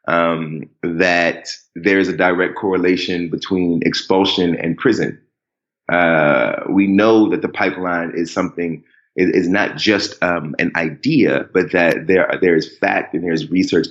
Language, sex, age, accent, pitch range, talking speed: English, male, 30-49, American, 85-100 Hz, 155 wpm